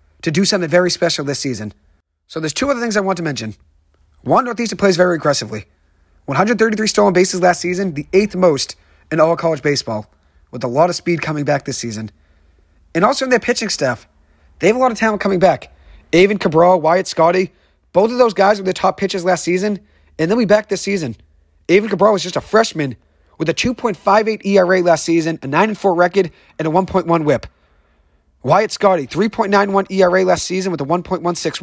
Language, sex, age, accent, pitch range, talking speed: English, male, 30-49, American, 135-195 Hz, 195 wpm